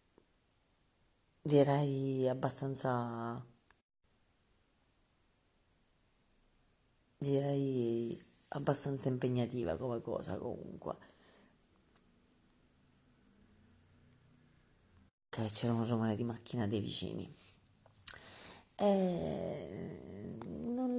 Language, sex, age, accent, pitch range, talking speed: Italian, female, 40-59, native, 115-145 Hz, 50 wpm